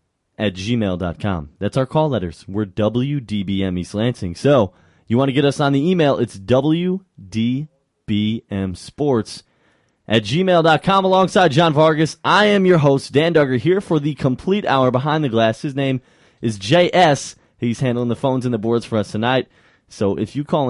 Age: 20-39